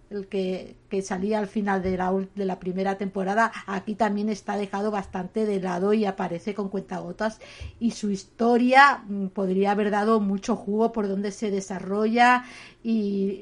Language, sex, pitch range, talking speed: Spanish, female, 185-210 Hz, 160 wpm